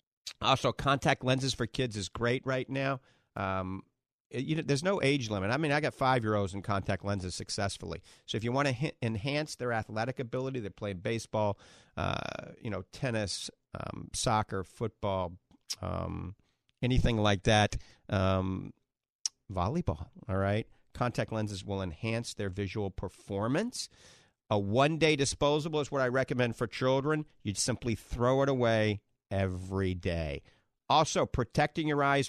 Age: 50-69